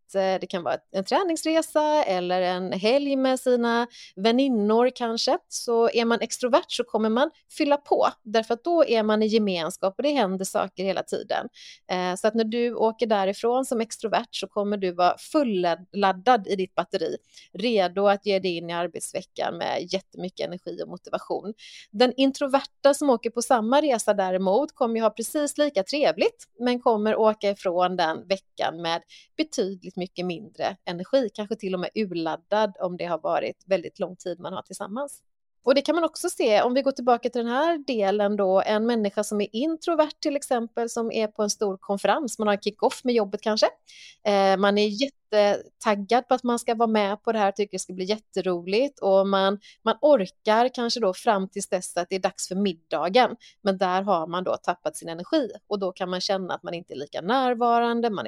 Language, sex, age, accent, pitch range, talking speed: Swedish, female, 30-49, native, 190-250 Hz, 195 wpm